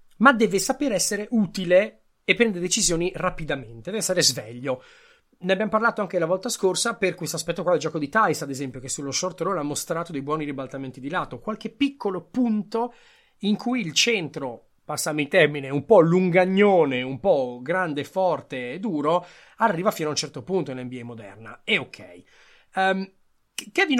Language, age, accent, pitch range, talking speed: Italian, 30-49, native, 145-230 Hz, 185 wpm